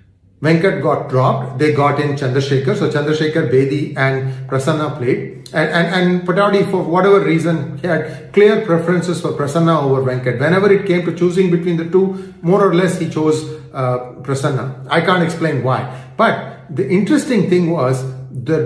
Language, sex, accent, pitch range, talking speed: English, male, Indian, 145-195 Hz, 170 wpm